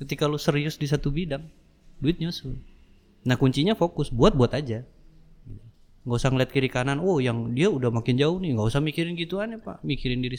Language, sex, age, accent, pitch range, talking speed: Indonesian, male, 30-49, native, 120-170 Hz, 195 wpm